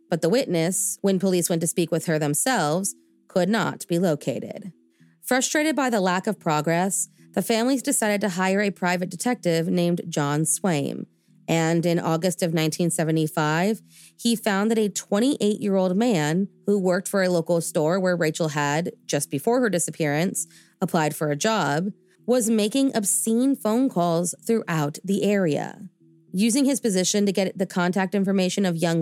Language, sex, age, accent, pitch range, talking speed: English, female, 30-49, American, 165-210 Hz, 160 wpm